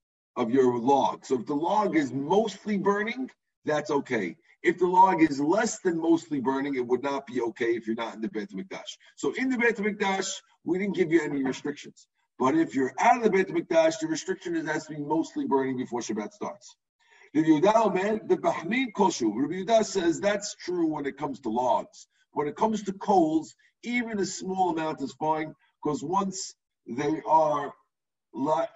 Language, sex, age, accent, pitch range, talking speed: English, male, 50-69, American, 130-220 Hz, 185 wpm